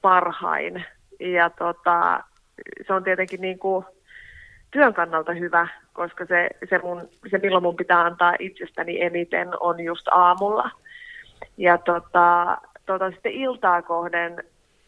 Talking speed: 115 wpm